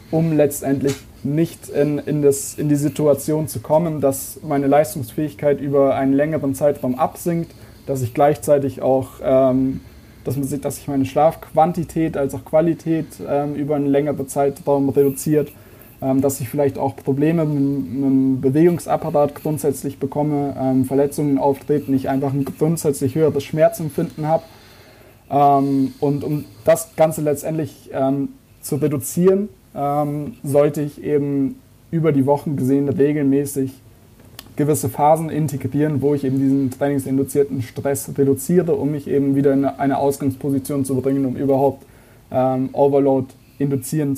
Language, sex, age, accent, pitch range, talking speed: German, male, 20-39, German, 135-150 Hz, 140 wpm